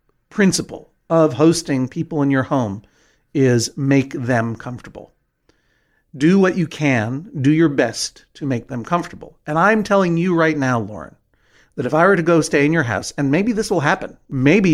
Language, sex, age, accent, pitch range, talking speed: English, male, 50-69, American, 130-170 Hz, 185 wpm